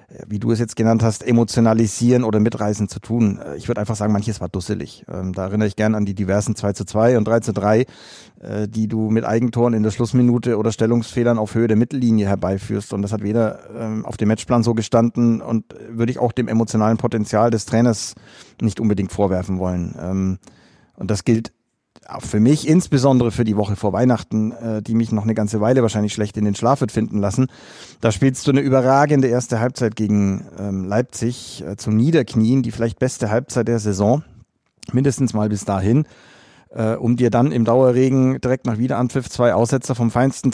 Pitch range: 105-125 Hz